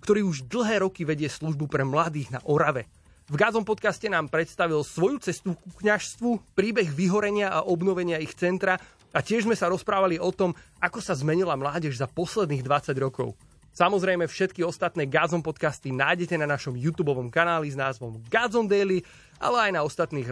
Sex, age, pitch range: male, 30-49, 145-190 Hz